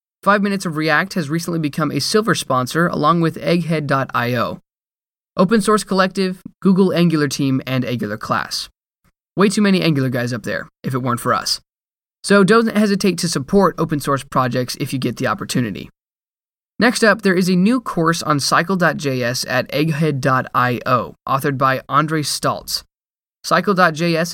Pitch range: 130-180 Hz